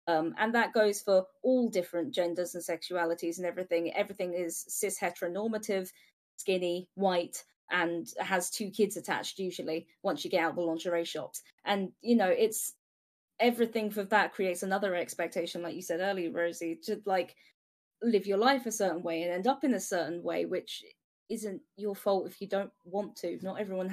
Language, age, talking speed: English, 20-39, 180 wpm